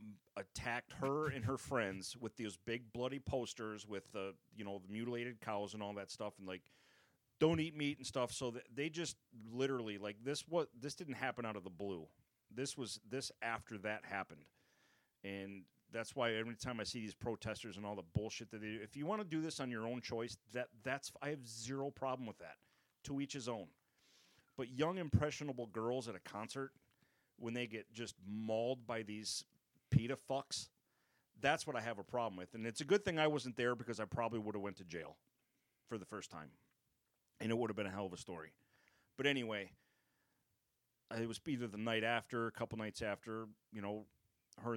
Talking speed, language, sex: 210 wpm, English, male